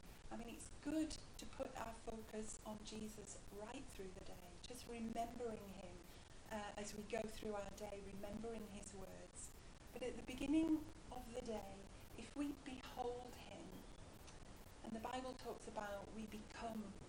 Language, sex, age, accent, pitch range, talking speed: English, female, 40-59, British, 210-250 Hz, 160 wpm